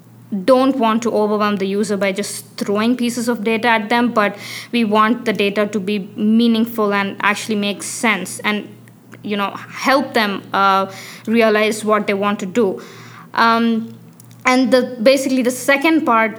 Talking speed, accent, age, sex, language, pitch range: 165 wpm, Indian, 20-39, female, English, 210-235 Hz